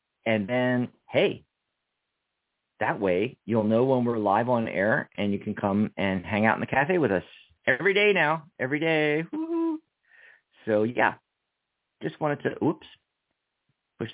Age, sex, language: 40-59, male, English